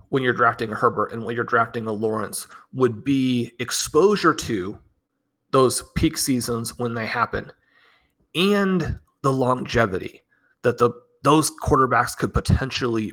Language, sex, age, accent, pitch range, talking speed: English, male, 30-49, American, 115-140 Hz, 135 wpm